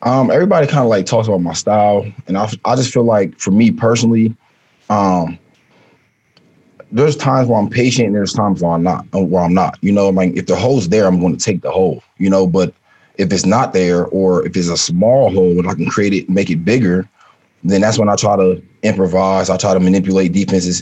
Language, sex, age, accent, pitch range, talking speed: English, male, 20-39, American, 90-105 Hz, 230 wpm